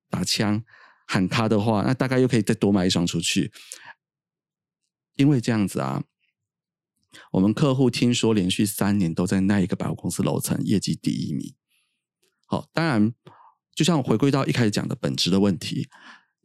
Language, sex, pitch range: Chinese, male, 100-135 Hz